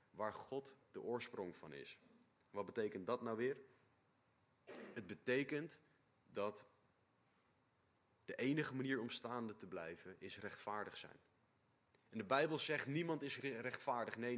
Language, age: Dutch, 30-49